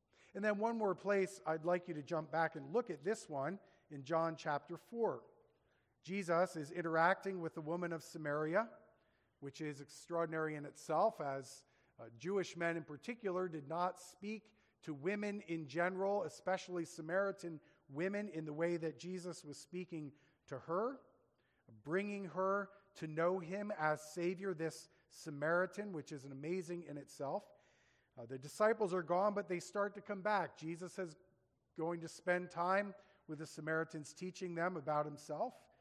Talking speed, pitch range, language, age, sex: 160 wpm, 150-185 Hz, English, 40-59, male